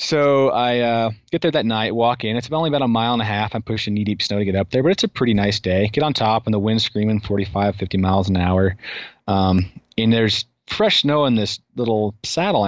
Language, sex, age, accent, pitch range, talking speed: English, male, 30-49, American, 95-115 Hz, 245 wpm